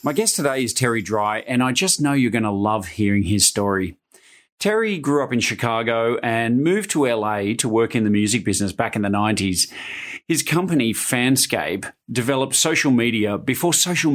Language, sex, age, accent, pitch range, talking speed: English, male, 40-59, Australian, 110-140 Hz, 185 wpm